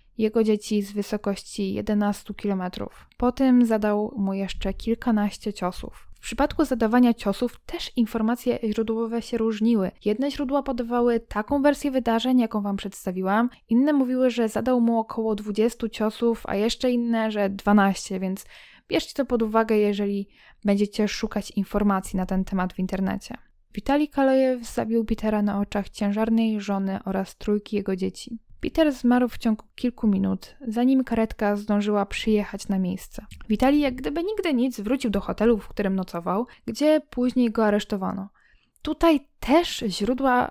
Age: 10-29